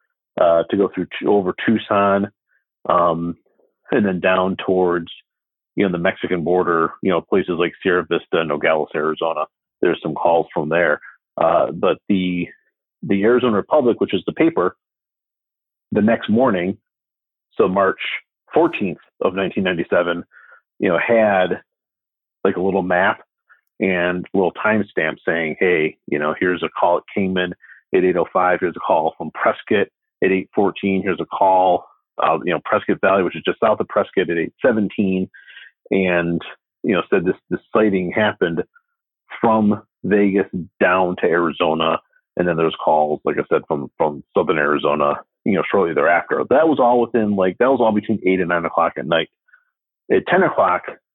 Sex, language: male, English